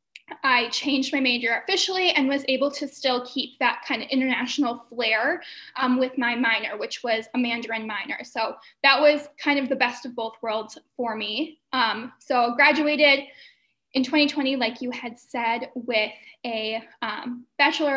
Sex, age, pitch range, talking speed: female, 10-29, 240-285 Hz, 170 wpm